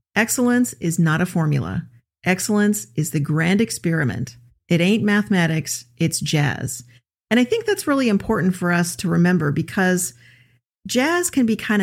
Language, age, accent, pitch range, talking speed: English, 40-59, American, 155-195 Hz, 150 wpm